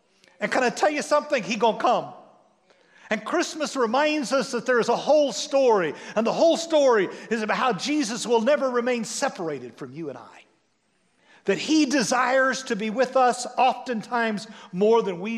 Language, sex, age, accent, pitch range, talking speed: English, male, 50-69, American, 220-285 Hz, 185 wpm